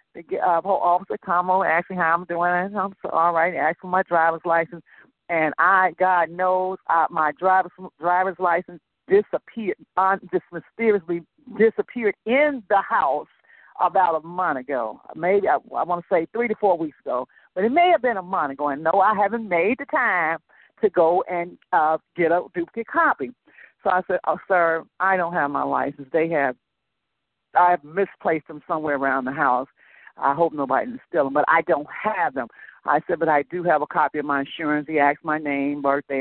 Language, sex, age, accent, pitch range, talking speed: English, female, 50-69, American, 160-190 Hz, 205 wpm